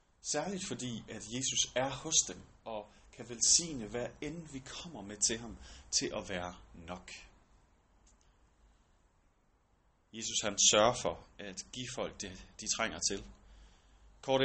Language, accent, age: Danish, native, 30-49